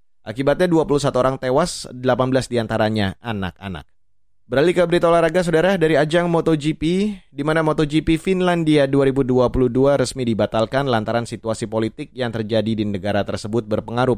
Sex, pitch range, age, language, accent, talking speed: male, 110-145 Hz, 20-39, Indonesian, native, 130 wpm